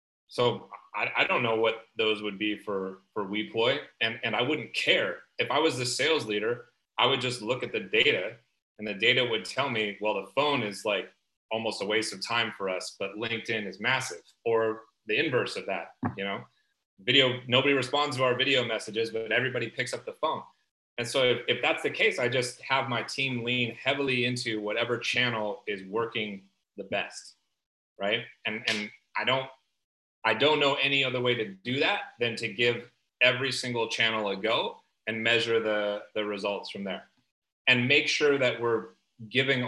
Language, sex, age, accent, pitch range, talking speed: English, male, 30-49, American, 110-135 Hz, 195 wpm